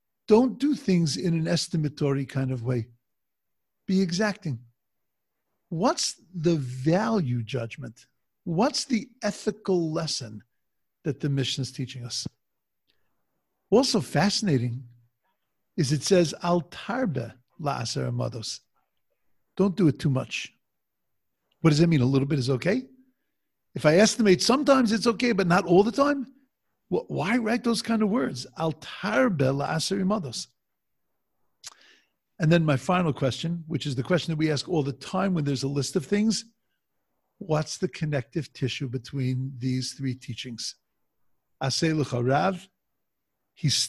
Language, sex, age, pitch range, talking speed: English, male, 50-69, 130-195 Hz, 125 wpm